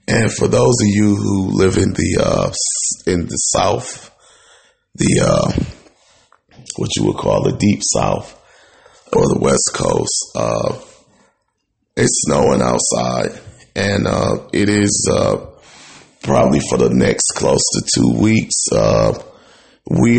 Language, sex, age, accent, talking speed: English, male, 30-49, American, 135 wpm